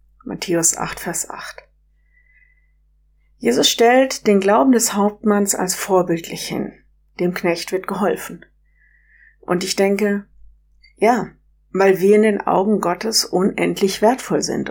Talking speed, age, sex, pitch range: 120 wpm, 50-69, female, 180-220 Hz